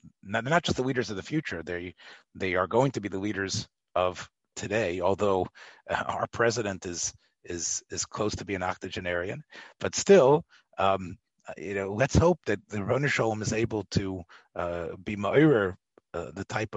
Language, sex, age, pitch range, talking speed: English, male, 40-59, 90-110 Hz, 175 wpm